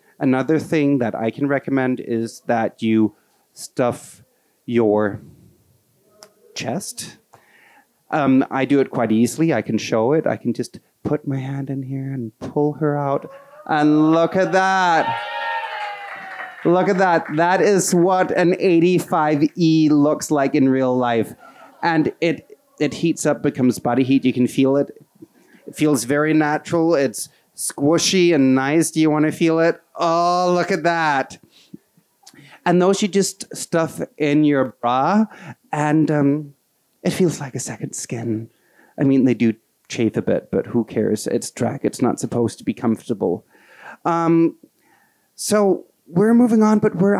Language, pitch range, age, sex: Danish, 130-175 Hz, 30-49, male